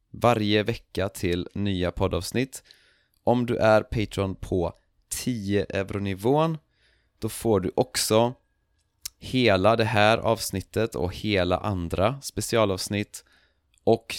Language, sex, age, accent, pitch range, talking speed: Swedish, male, 30-49, native, 90-115 Hz, 105 wpm